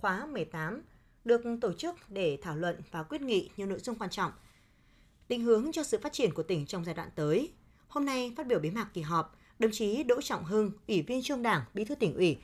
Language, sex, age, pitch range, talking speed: Vietnamese, female, 20-39, 165-240 Hz, 235 wpm